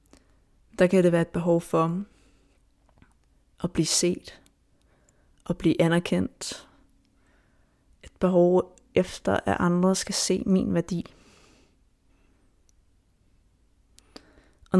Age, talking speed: 20-39, 95 wpm